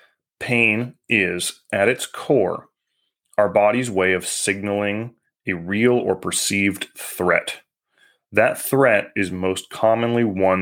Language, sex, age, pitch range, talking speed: English, male, 20-39, 95-115 Hz, 120 wpm